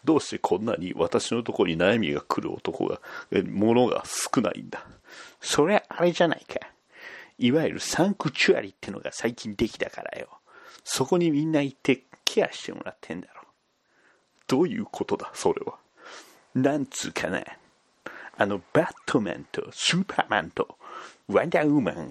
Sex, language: male, Japanese